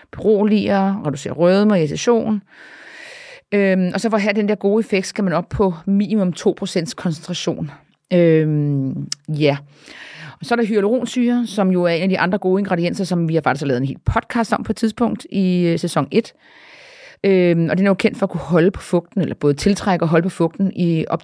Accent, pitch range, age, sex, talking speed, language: native, 160-205 Hz, 30-49, female, 210 wpm, Danish